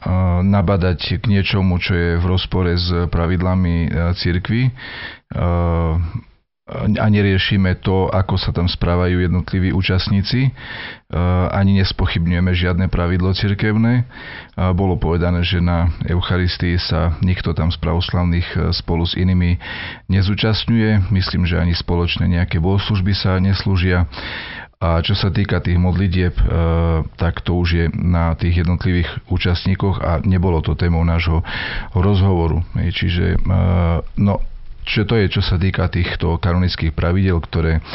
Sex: male